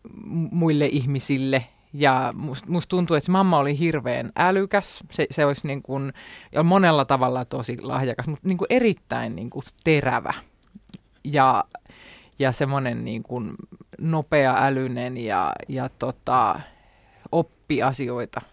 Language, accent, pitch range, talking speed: Finnish, native, 130-145 Hz, 130 wpm